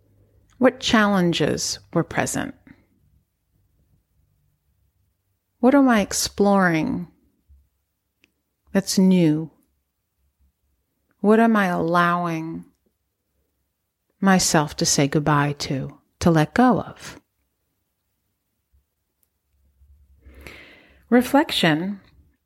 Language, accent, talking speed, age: English, American, 65 wpm, 40-59